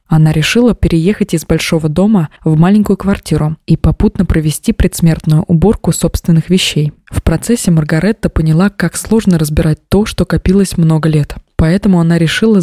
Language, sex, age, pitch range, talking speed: Russian, female, 20-39, 165-190 Hz, 145 wpm